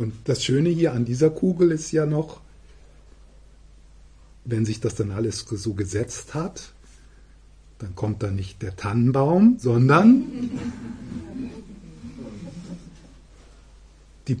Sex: male